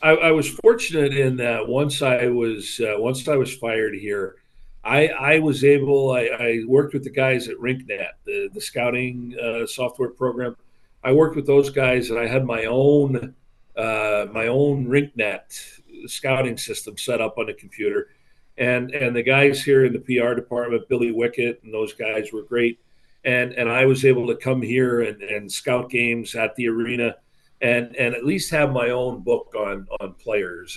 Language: English